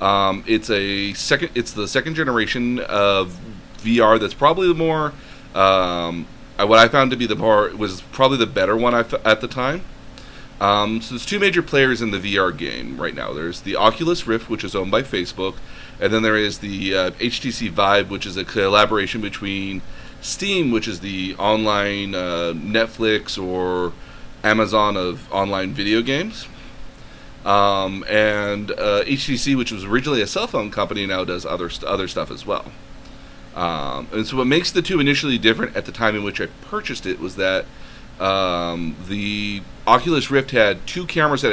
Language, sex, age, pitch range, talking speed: English, male, 30-49, 100-130 Hz, 180 wpm